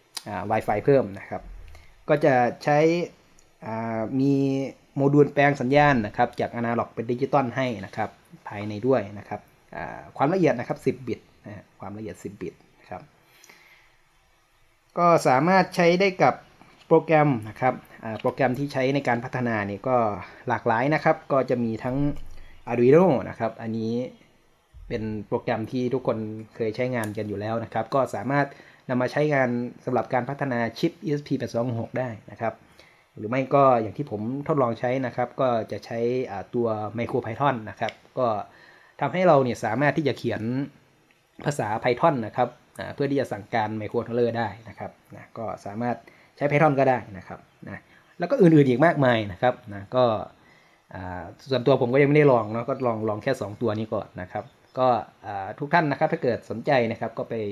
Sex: male